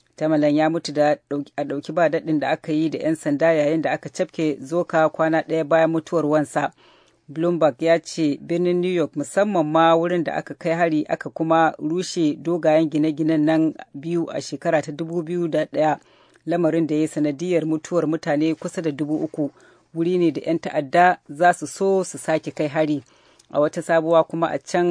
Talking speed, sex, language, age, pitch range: 160 wpm, female, English, 40-59, 150-170 Hz